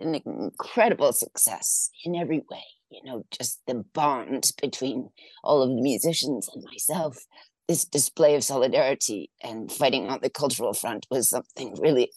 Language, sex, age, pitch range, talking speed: German, female, 40-59, 130-165 Hz, 155 wpm